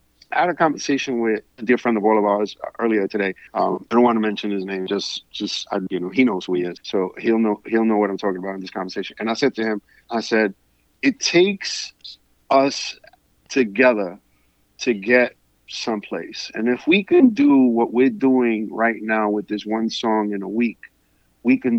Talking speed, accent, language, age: 210 wpm, American, English, 50-69